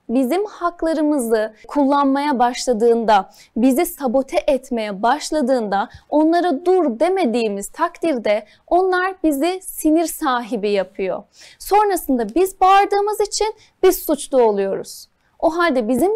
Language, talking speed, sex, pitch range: Turkish, 100 wpm, female, 240-335 Hz